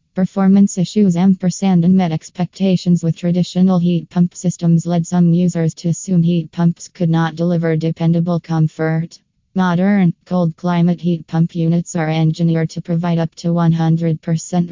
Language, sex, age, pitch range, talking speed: English, female, 20-39, 165-175 Hz, 145 wpm